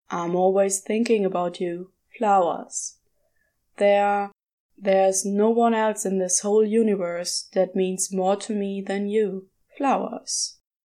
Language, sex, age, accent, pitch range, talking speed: English, female, 20-39, German, 190-250 Hz, 125 wpm